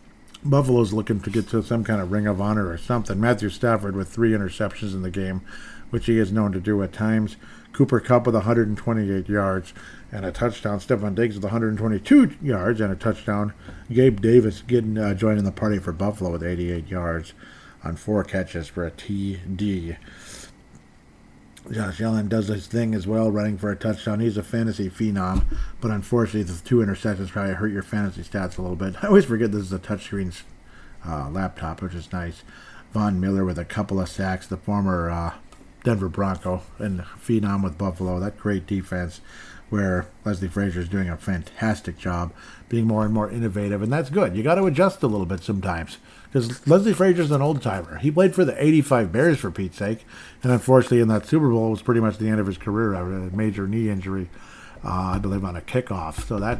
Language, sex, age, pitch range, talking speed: English, male, 50-69, 95-115 Hz, 200 wpm